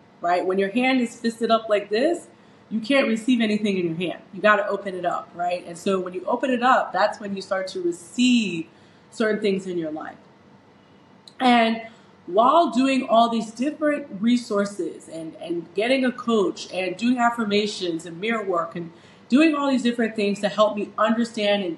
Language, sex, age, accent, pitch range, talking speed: English, female, 30-49, American, 190-240 Hz, 195 wpm